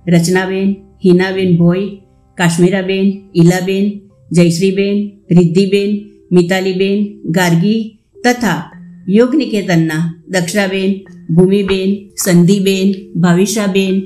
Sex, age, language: female, 50-69, Gujarati